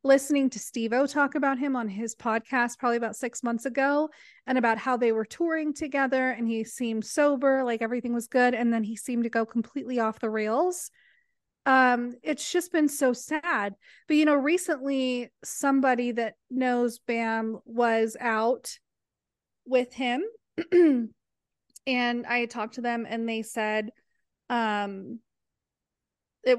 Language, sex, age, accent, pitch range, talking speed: English, female, 30-49, American, 225-270 Hz, 150 wpm